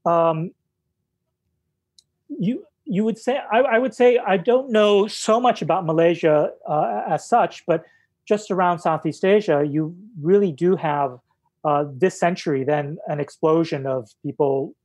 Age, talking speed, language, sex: 30-49, 145 wpm, English, male